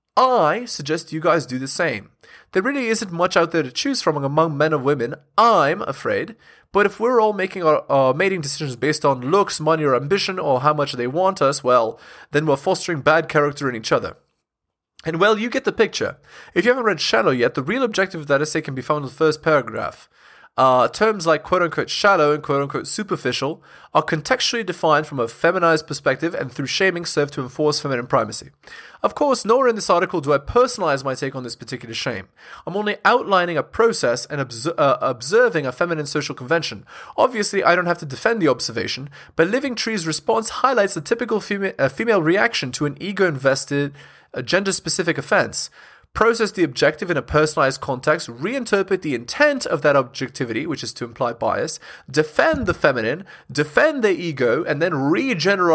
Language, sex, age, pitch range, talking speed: English, male, 20-39, 140-190 Hz, 190 wpm